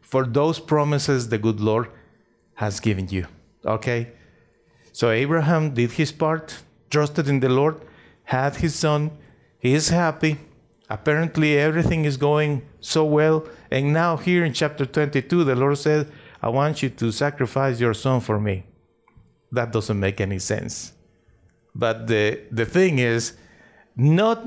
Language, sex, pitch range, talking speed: English, male, 120-170 Hz, 145 wpm